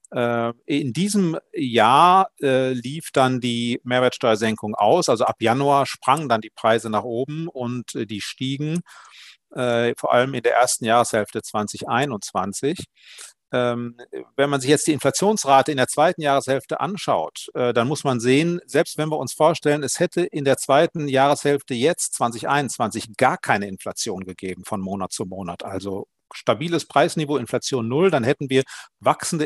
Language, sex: German, male